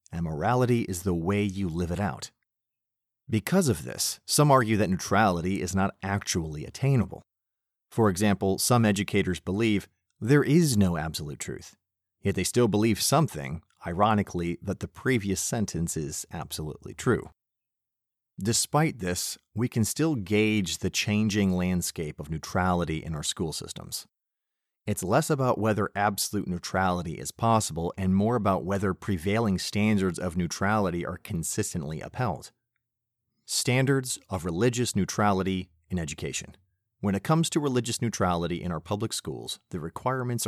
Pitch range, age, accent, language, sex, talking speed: 90-115 Hz, 30-49, American, English, male, 140 wpm